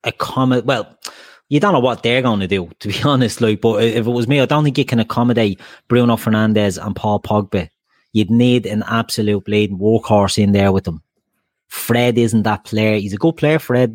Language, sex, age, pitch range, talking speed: English, male, 30-49, 105-125 Hz, 215 wpm